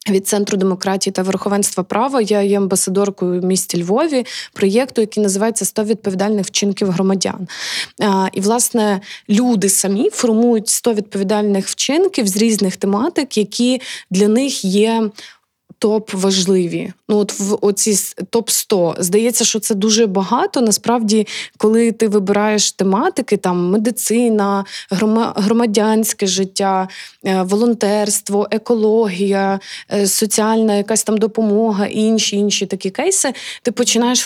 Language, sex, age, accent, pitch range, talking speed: Ukrainian, female, 20-39, native, 195-225 Hz, 115 wpm